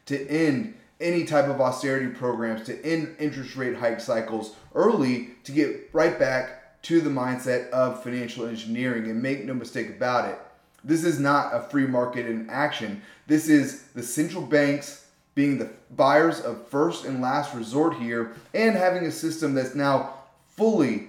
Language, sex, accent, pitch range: English, male, American, 120-150 Hz